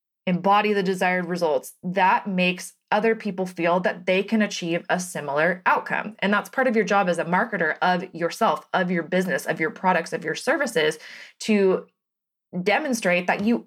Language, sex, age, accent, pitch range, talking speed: English, female, 20-39, American, 175-220 Hz, 175 wpm